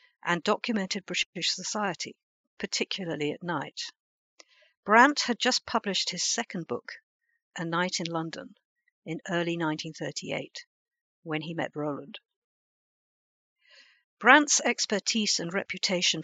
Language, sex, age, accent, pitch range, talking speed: English, female, 50-69, British, 155-210 Hz, 105 wpm